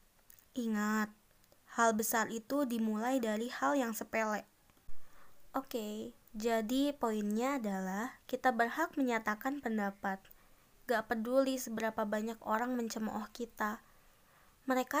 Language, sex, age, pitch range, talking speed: Indonesian, female, 20-39, 225-265 Hz, 105 wpm